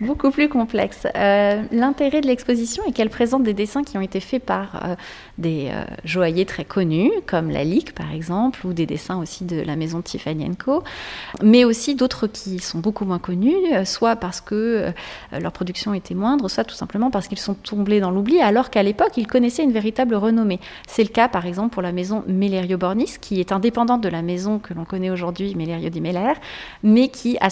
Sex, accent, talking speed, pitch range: female, French, 210 wpm, 190-245 Hz